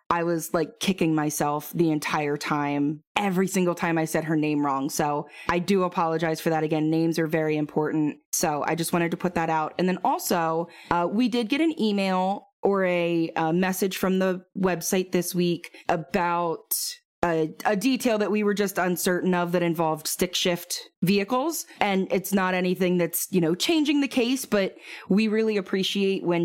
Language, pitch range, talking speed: English, 160-190 Hz, 190 wpm